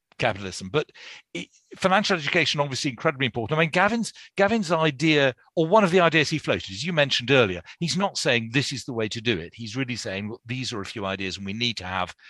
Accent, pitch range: British, 110-150 Hz